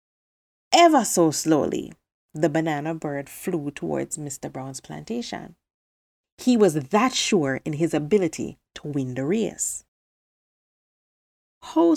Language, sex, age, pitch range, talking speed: English, female, 30-49, 155-245 Hz, 115 wpm